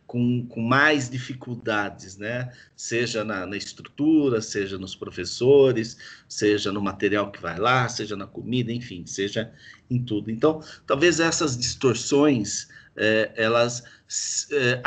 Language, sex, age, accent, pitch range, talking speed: Portuguese, male, 50-69, Brazilian, 115-150 Hz, 130 wpm